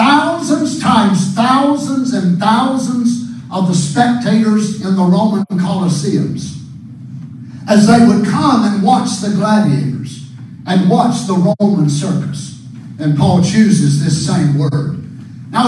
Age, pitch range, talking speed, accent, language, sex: 50-69, 150-230 Hz, 125 wpm, American, English, male